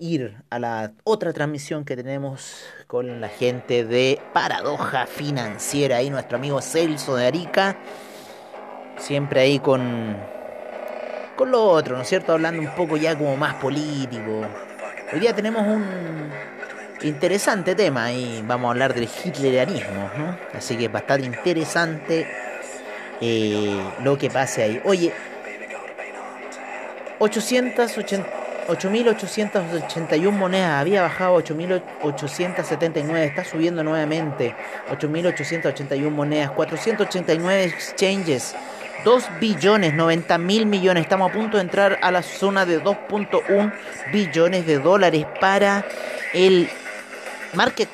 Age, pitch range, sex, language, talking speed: 30-49, 140-200 Hz, male, Spanish, 115 wpm